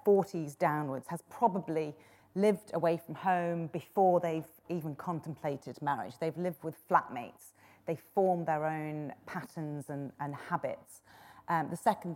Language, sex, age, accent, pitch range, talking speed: English, female, 30-49, British, 155-185 Hz, 140 wpm